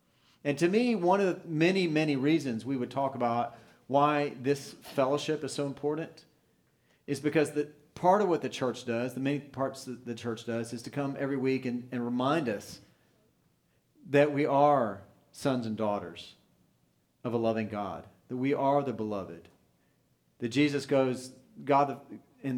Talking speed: 170 wpm